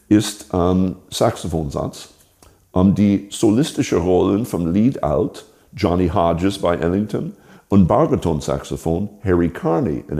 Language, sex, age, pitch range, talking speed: German, male, 60-79, 90-105 Hz, 110 wpm